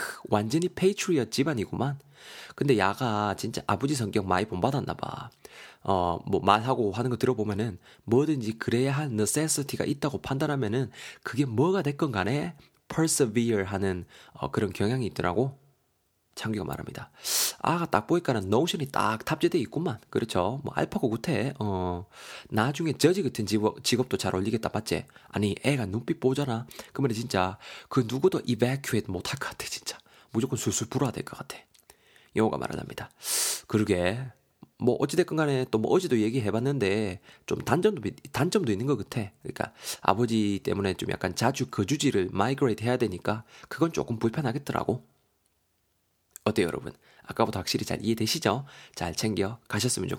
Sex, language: male, Korean